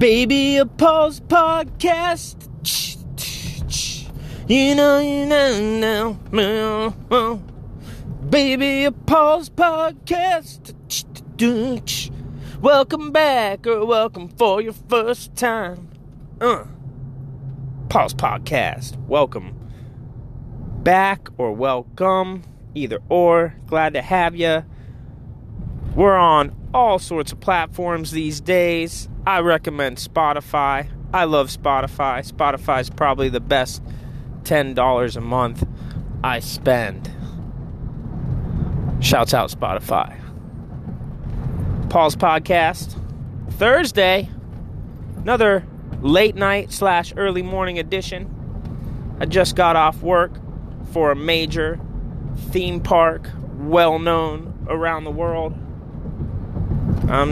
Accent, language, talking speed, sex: American, English, 95 wpm, male